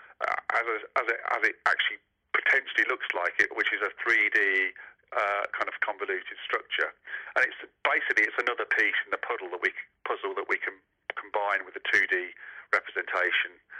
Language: English